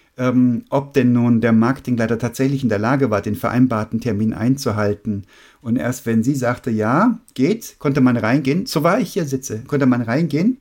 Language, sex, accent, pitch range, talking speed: German, male, German, 110-135 Hz, 185 wpm